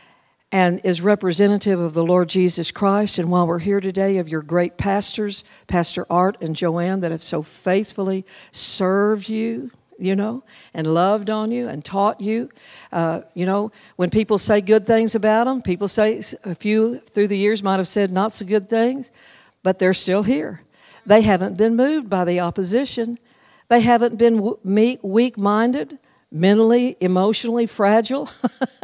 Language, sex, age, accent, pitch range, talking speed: English, female, 60-79, American, 185-235 Hz, 160 wpm